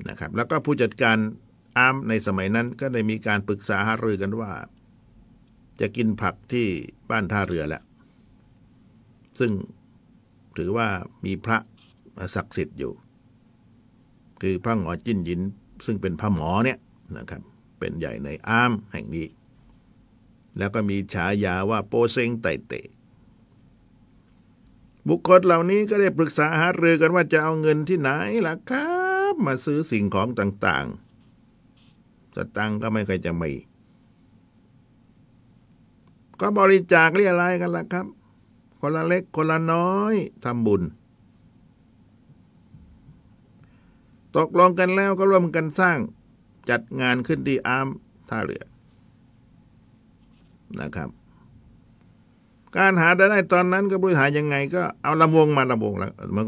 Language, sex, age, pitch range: Thai, male, 60-79, 105-165 Hz